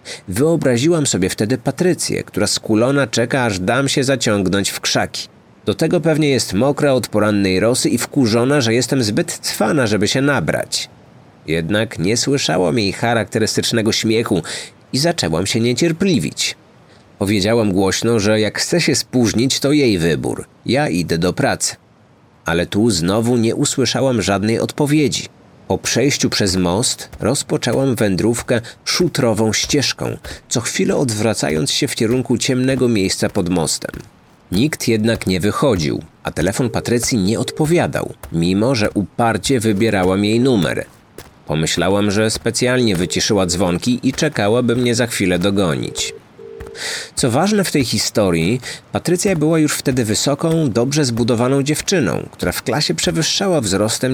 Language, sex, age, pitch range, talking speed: Polish, male, 30-49, 105-140 Hz, 135 wpm